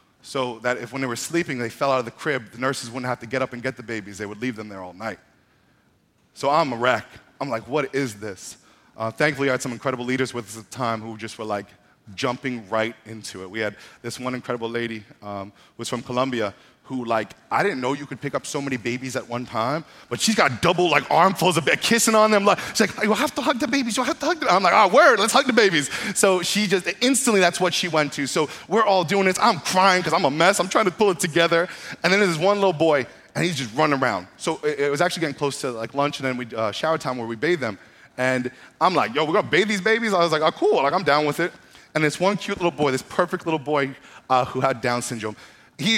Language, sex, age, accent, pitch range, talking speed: English, male, 30-49, American, 125-180 Hz, 275 wpm